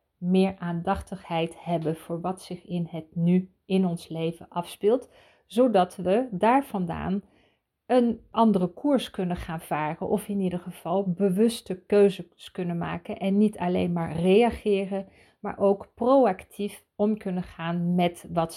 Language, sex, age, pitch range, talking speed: Dutch, female, 40-59, 180-210 Hz, 140 wpm